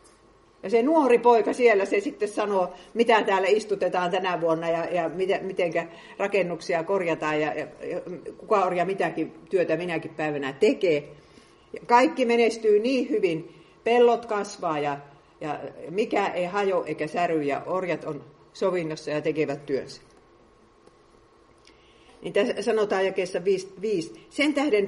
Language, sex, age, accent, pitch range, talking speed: Finnish, female, 50-69, native, 155-230 Hz, 135 wpm